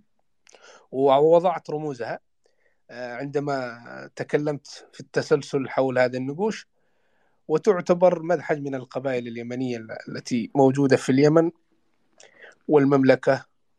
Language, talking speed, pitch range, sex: English, 85 wpm, 130-160 Hz, male